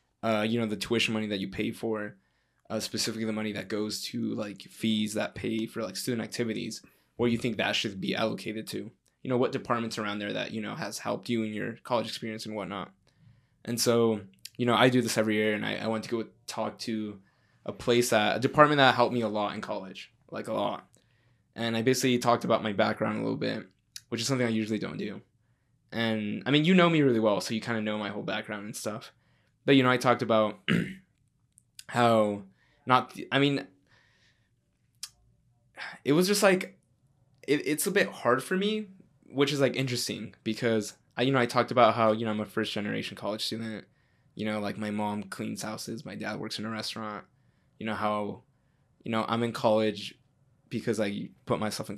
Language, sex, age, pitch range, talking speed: English, male, 10-29, 110-125 Hz, 210 wpm